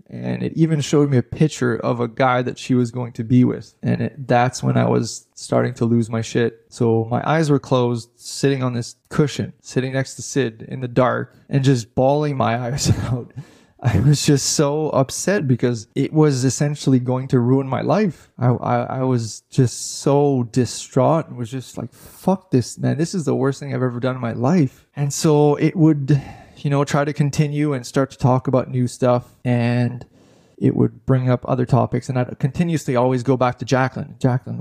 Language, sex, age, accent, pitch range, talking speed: English, male, 20-39, American, 120-140 Hz, 210 wpm